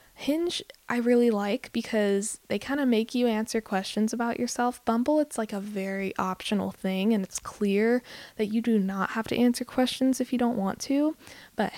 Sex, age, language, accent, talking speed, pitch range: female, 10-29, English, American, 195 wpm, 195-245 Hz